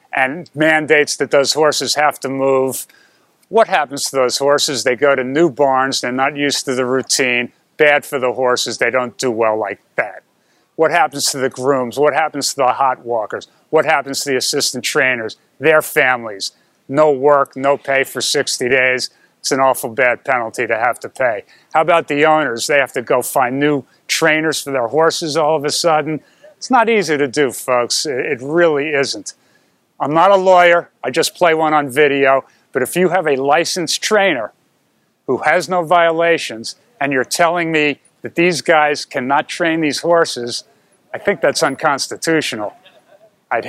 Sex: male